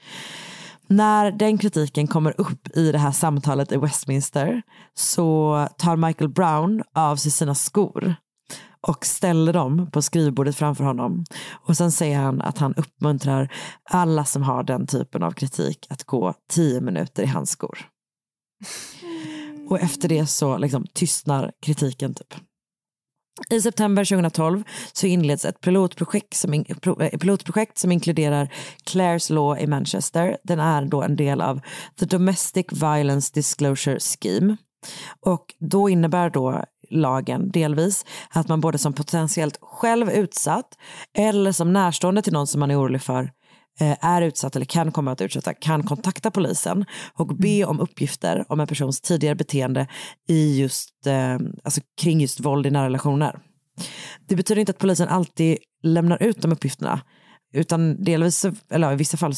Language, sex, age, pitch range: Swedish, female, 30-49, 145-185 Hz